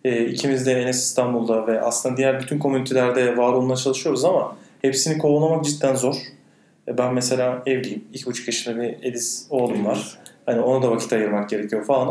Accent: native